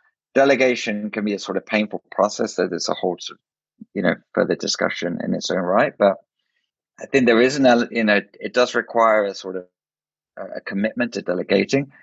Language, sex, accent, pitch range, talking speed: English, male, British, 100-120 Hz, 200 wpm